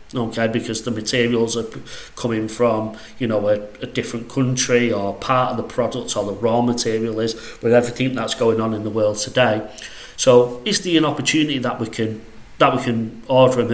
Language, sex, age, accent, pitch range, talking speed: English, male, 40-59, British, 120-140 Hz, 195 wpm